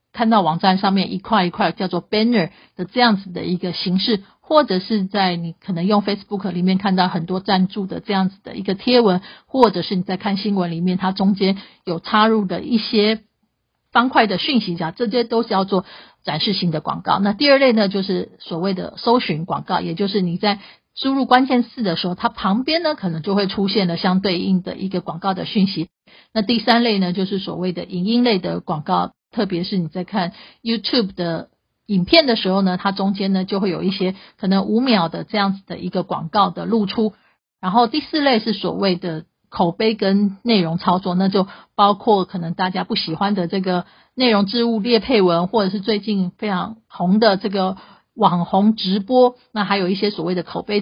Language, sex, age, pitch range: Chinese, female, 50-69, 185-220 Hz